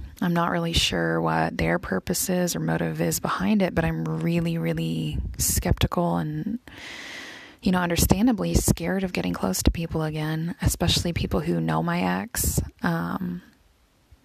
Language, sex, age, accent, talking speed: English, female, 20-39, American, 150 wpm